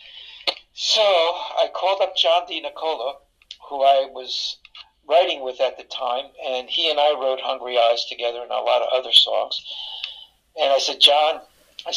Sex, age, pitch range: male, 60-79, 130-165 Hz